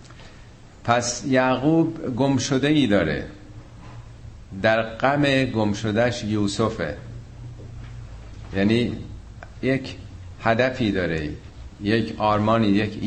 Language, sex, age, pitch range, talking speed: Persian, male, 50-69, 100-115 Hz, 70 wpm